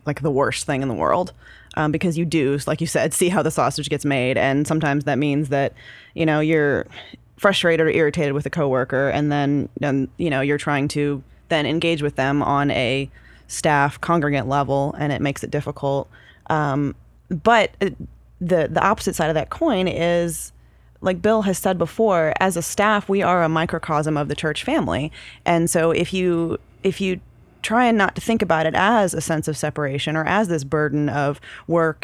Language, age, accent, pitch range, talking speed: English, 20-39, American, 145-180 Hz, 195 wpm